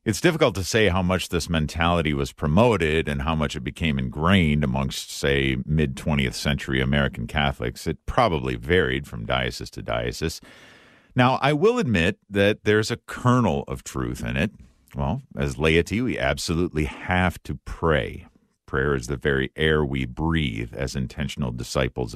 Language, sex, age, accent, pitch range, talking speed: English, male, 50-69, American, 70-95 Hz, 160 wpm